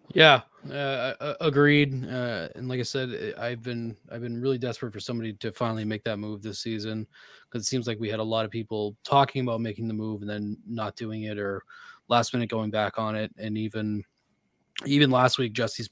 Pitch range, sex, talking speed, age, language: 110-130 Hz, male, 210 wpm, 20-39, English